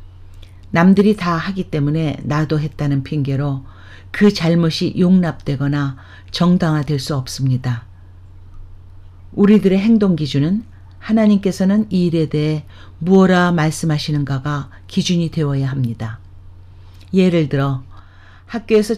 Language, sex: Korean, female